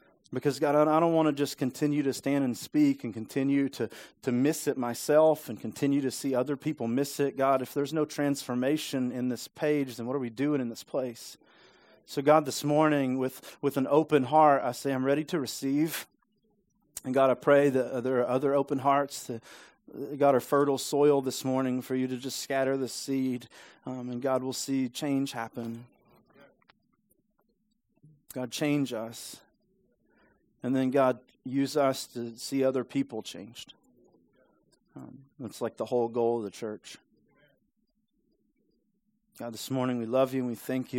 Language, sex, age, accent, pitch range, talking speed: English, male, 30-49, American, 120-145 Hz, 175 wpm